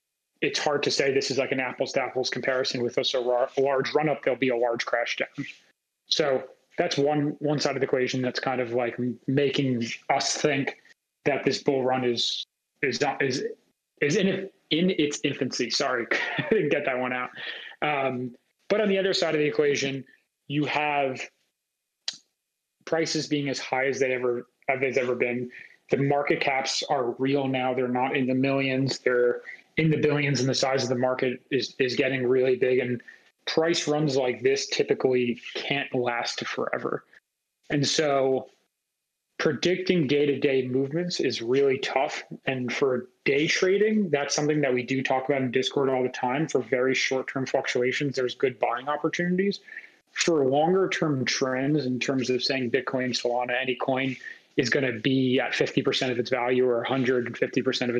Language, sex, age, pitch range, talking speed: English, male, 30-49, 125-150 Hz, 175 wpm